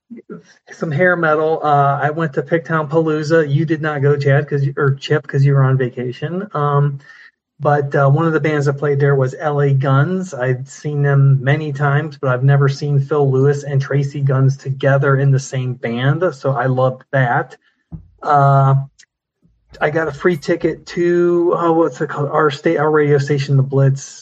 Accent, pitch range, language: American, 135-155 Hz, English